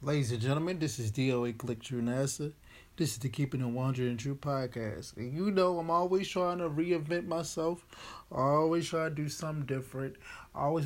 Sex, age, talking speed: male, 20-39, 195 wpm